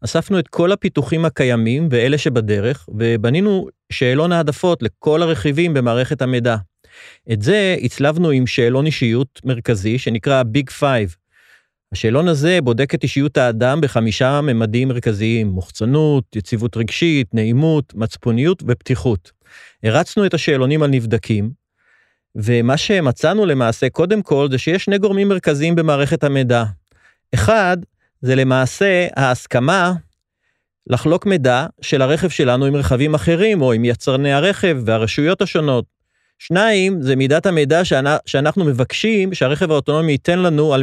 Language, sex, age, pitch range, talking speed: Hebrew, male, 30-49, 125-165 Hz, 125 wpm